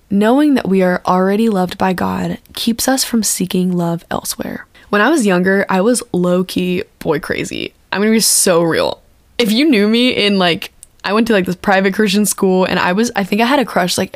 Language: English